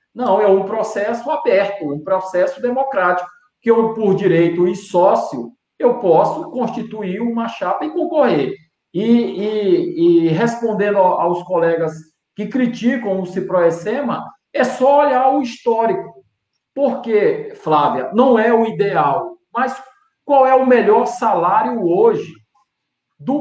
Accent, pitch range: Brazilian, 180-245 Hz